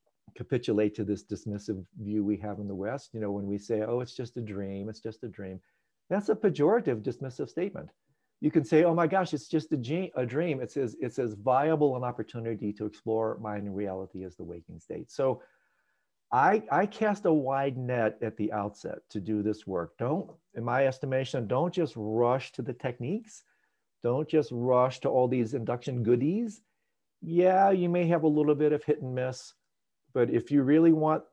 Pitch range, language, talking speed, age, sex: 105-145 Hz, English, 195 wpm, 50-69, male